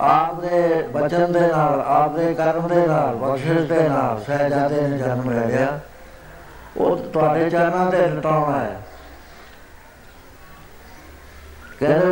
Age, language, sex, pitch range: 60-79, Punjabi, male, 130-160 Hz